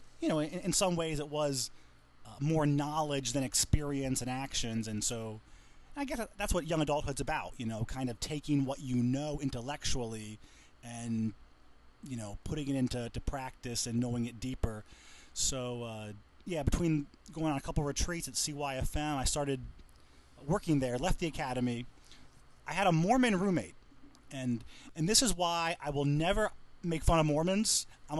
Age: 30-49